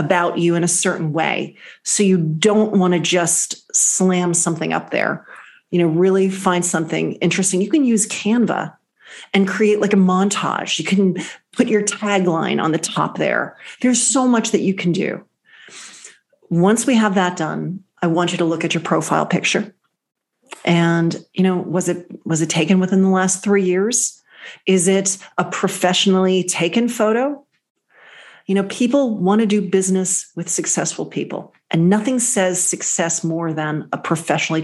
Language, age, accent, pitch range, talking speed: English, 40-59, American, 175-210 Hz, 170 wpm